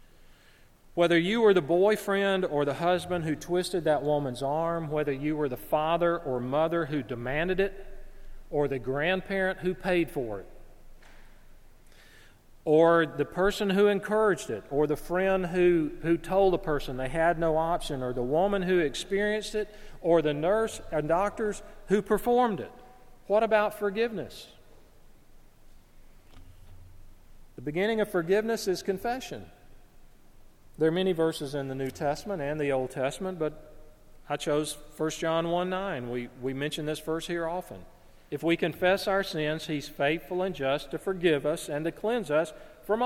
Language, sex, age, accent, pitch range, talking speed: English, male, 40-59, American, 150-200 Hz, 160 wpm